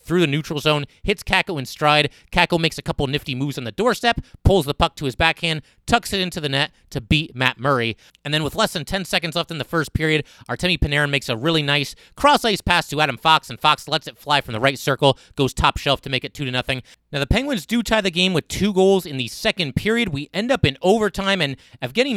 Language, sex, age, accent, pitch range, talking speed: English, male, 30-49, American, 145-195 Hz, 250 wpm